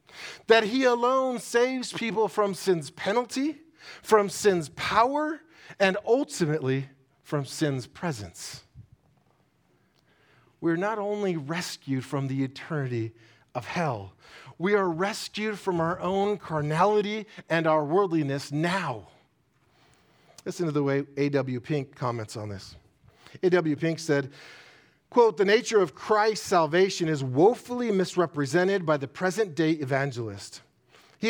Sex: male